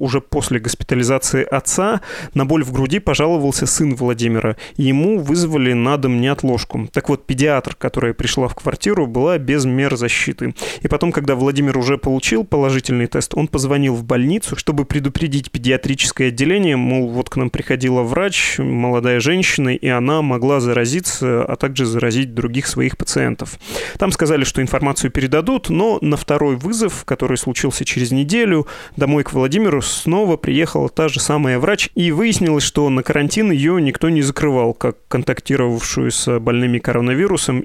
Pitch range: 125-150 Hz